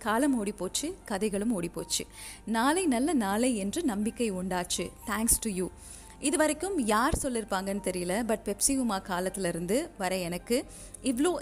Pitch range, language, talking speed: 200-270 Hz, Tamil, 140 wpm